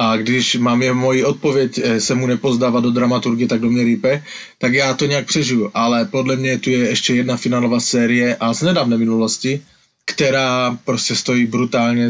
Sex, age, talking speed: male, 20-39, 185 wpm